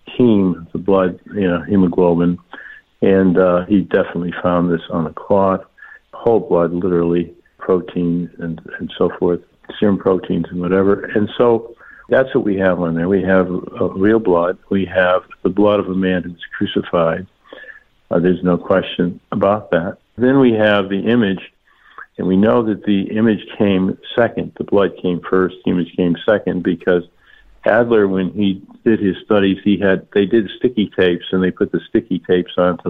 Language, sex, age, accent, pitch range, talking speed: English, male, 60-79, American, 90-105 Hz, 175 wpm